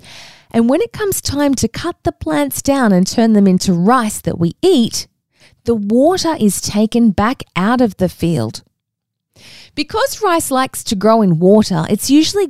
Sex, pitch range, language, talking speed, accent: female, 190-275 Hz, English, 175 wpm, Australian